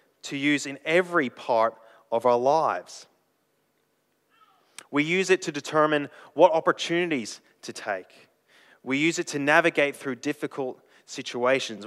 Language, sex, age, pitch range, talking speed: English, male, 20-39, 125-160 Hz, 125 wpm